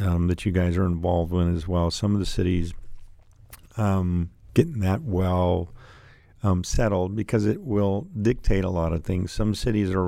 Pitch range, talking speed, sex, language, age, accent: 90-100 Hz, 180 wpm, male, English, 50-69, American